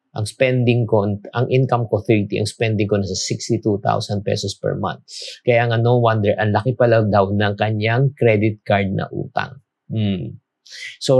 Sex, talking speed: male, 165 wpm